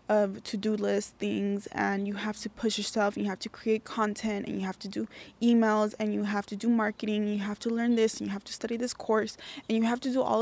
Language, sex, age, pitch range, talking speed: English, female, 20-39, 200-230 Hz, 270 wpm